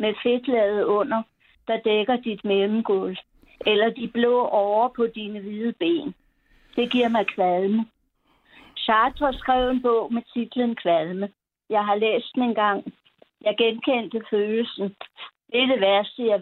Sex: female